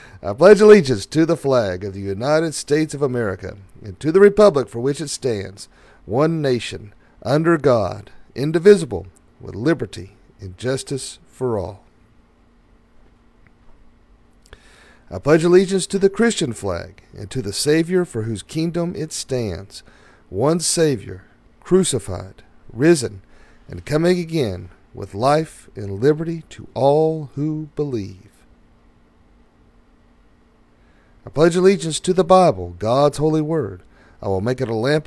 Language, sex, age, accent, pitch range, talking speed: English, male, 50-69, American, 100-155 Hz, 130 wpm